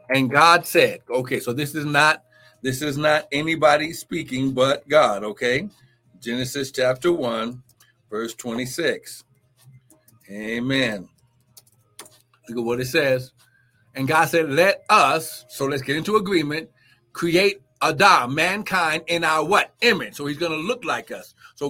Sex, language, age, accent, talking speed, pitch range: male, English, 60-79, American, 145 wpm, 135-185 Hz